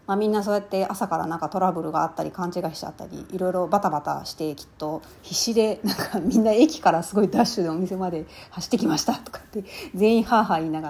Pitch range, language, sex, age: 170-220 Hz, Japanese, female, 30-49